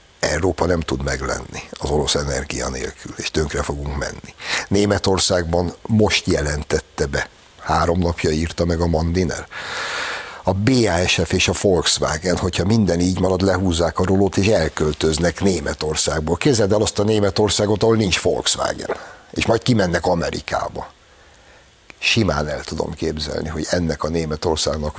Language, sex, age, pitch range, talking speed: Hungarian, male, 60-79, 80-100 Hz, 135 wpm